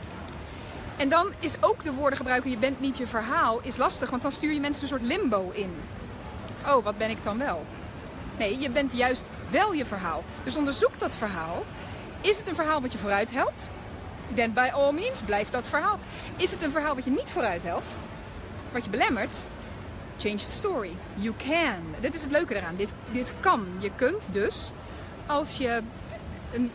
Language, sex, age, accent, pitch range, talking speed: Dutch, female, 30-49, Dutch, 225-305 Hz, 195 wpm